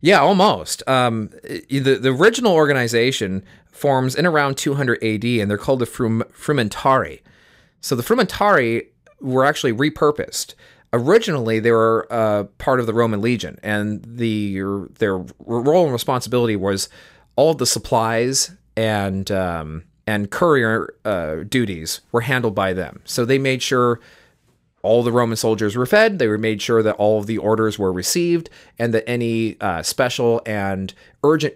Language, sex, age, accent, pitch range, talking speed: English, male, 30-49, American, 105-130 Hz, 150 wpm